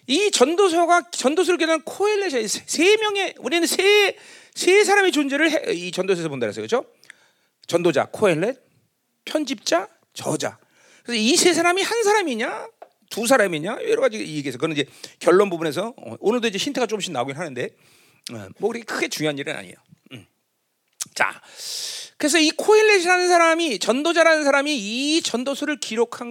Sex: male